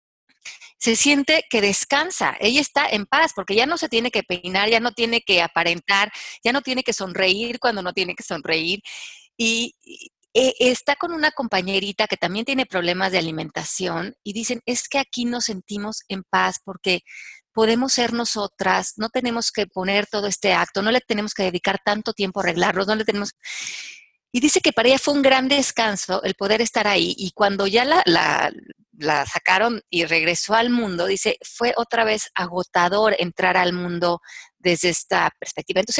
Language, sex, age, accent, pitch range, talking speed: Spanish, female, 30-49, Mexican, 180-245 Hz, 180 wpm